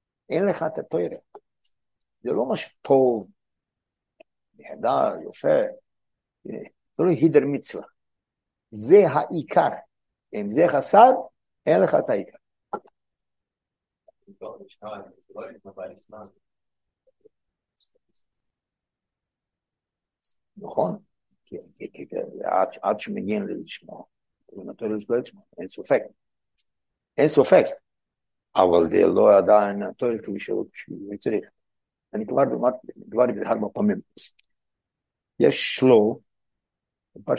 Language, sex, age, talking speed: Hebrew, male, 60-79, 80 wpm